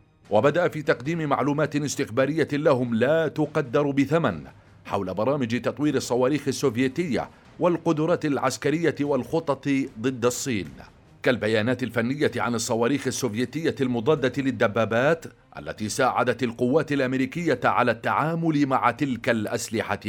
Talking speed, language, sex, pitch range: 105 wpm, Arabic, male, 125-155 Hz